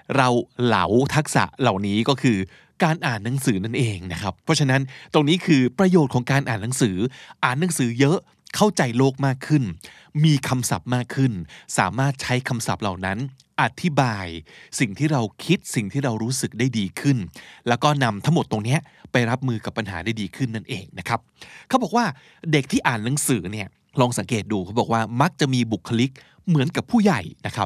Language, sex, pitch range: Thai, male, 115-165 Hz